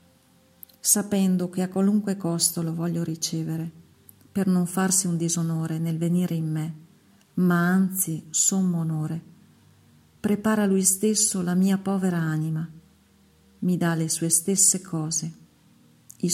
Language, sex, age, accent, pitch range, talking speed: Italian, female, 50-69, native, 160-185 Hz, 130 wpm